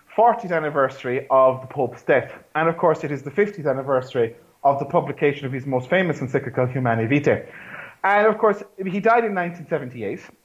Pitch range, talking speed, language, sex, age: 140-195 Hz, 180 wpm, English, male, 30-49